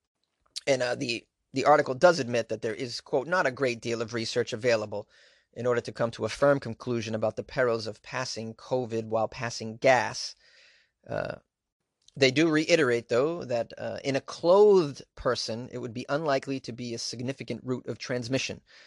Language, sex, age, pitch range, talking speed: English, male, 30-49, 120-150 Hz, 180 wpm